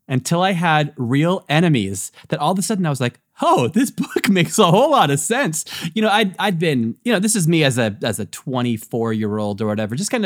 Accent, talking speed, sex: American, 255 wpm, male